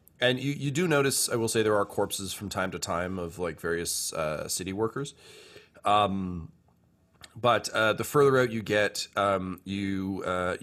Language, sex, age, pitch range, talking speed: English, male, 30-49, 90-105 Hz, 180 wpm